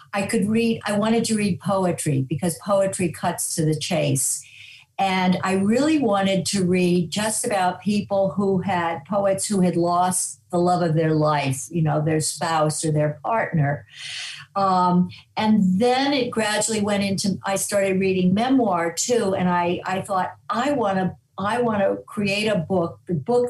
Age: 50-69